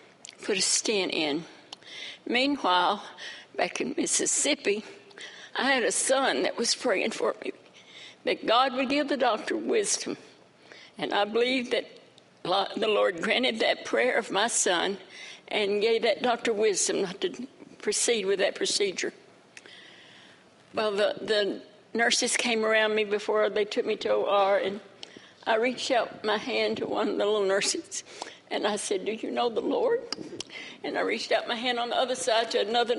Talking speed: 165 wpm